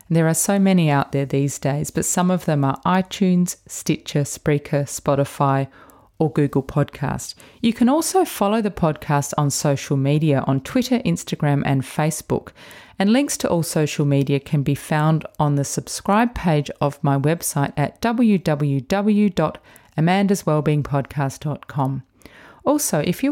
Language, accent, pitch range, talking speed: English, Australian, 140-200 Hz, 140 wpm